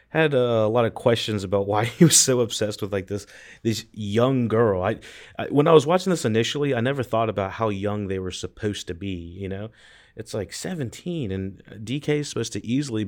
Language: English